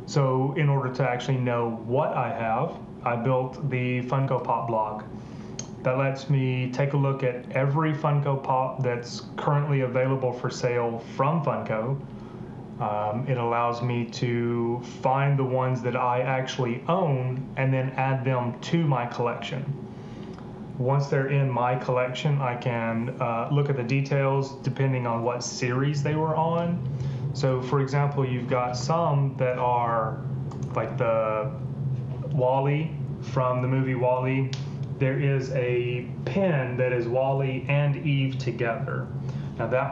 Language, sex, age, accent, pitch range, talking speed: English, male, 30-49, American, 125-140 Hz, 145 wpm